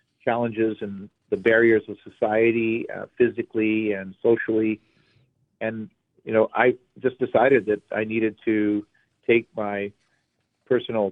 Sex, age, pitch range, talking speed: male, 40-59, 105-115 Hz, 125 wpm